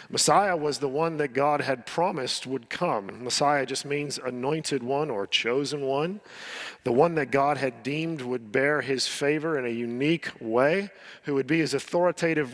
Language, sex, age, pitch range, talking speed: English, male, 40-59, 135-170 Hz, 175 wpm